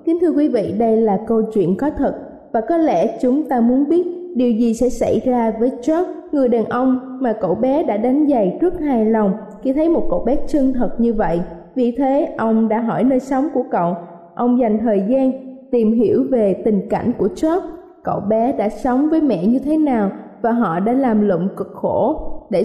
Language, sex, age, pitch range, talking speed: Vietnamese, female, 20-39, 215-270 Hz, 215 wpm